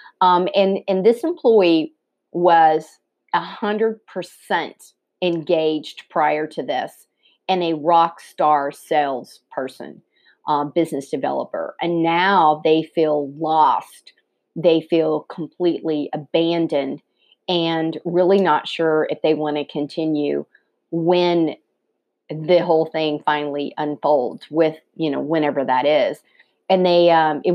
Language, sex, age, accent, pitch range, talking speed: English, female, 40-59, American, 155-185 Hz, 115 wpm